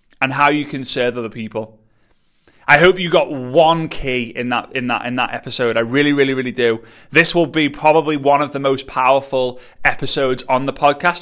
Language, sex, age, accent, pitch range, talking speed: English, male, 30-49, British, 130-165 Hz, 205 wpm